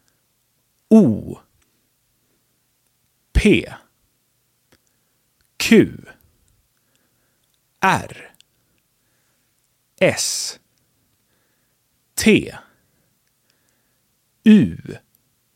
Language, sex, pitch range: English, male, 120-155 Hz